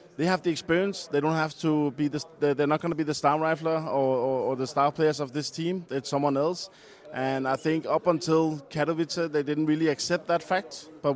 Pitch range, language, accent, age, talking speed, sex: 145-175 Hz, French, Danish, 20-39, 230 wpm, male